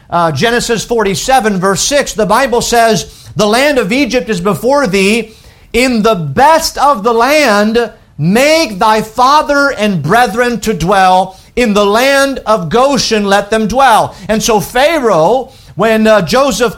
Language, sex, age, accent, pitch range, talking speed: English, male, 50-69, American, 205-260 Hz, 150 wpm